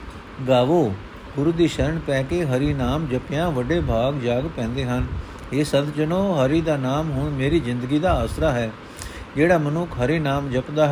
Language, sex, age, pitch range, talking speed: Punjabi, male, 50-69, 125-155 Hz, 165 wpm